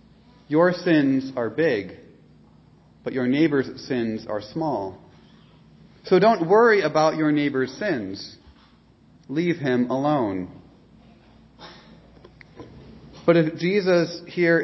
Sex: male